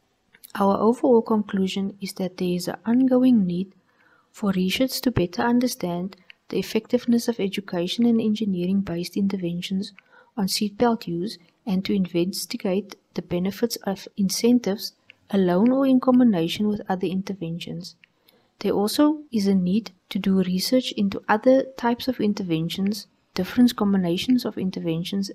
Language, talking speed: English, 135 wpm